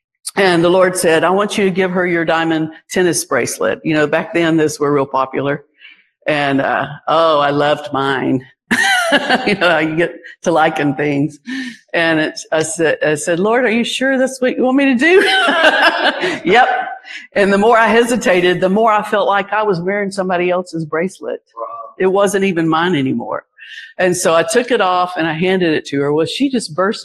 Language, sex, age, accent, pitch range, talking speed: English, female, 50-69, American, 165-260 Hz, 200 wpm